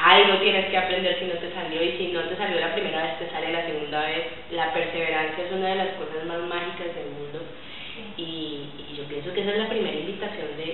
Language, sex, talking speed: Spanish, female, 240 wpm